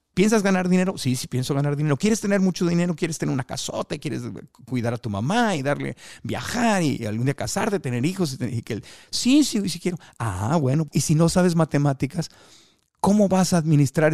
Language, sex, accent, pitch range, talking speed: Spanish, male, Mexican, 130-170 Hz, 215 wpm